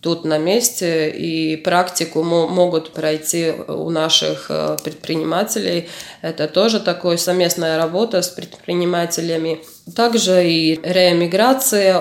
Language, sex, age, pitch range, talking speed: Russian, female, 20-39, 165-190 Hz, 100 wpm